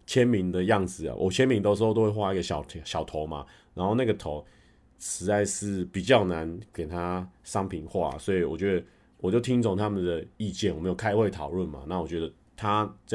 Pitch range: 85-115 Hz